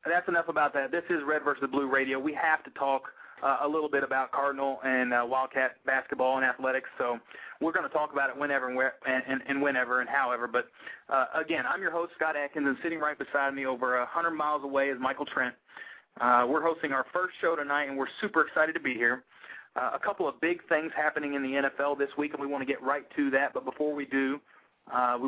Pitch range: 130-150 Hz